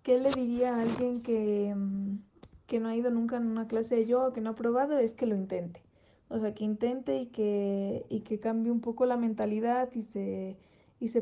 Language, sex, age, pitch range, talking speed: Spanish, female, 20-39, 200-225 Hz, 225 wpm